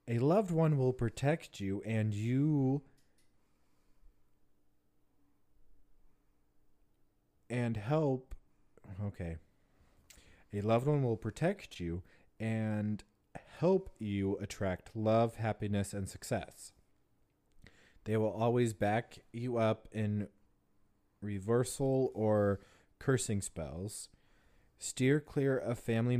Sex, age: male, 30-49